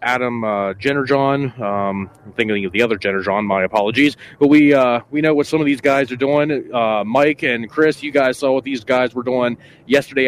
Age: 30-49